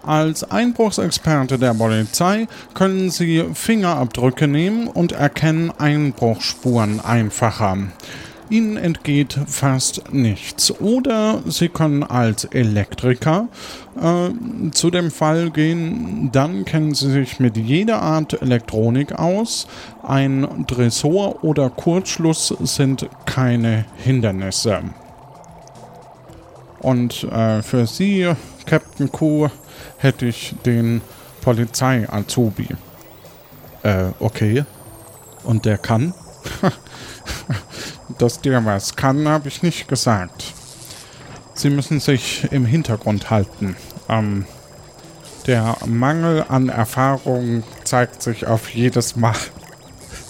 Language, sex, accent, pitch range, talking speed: German, male, German, 115-155 Hz, 95 wpm